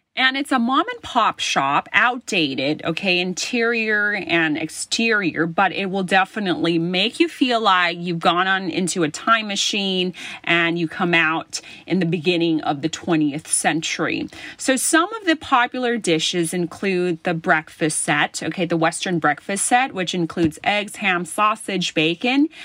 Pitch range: 165-225 Hz